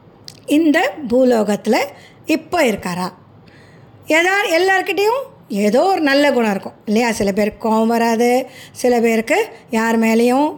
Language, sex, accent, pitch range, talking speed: Tamil, female, native, 220-315 Hz, 115 wpm